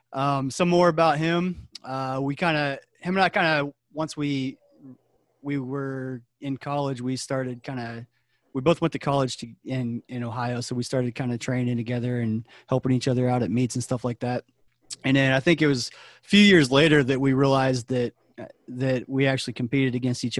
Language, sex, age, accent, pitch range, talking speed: English, male, 30-49, American, 125-140 Hz, 210 wpm